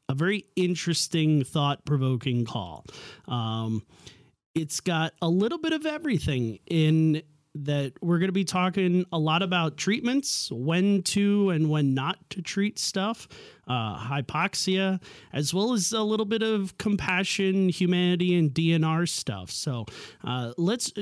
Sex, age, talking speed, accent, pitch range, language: male, 30-49, 140 wpm, American, 145-185 Hz, English